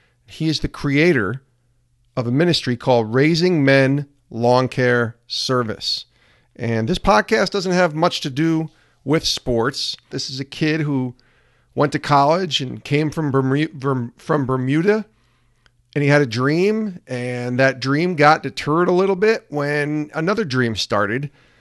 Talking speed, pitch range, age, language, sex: 145 wpm, 115-145 Hz, 40-59, English, male